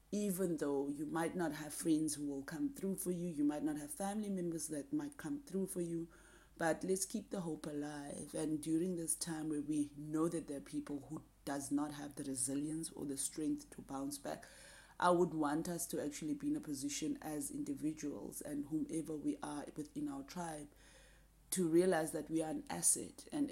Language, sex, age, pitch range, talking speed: English, female, 30-49, 150-210 Hz, 205 wpm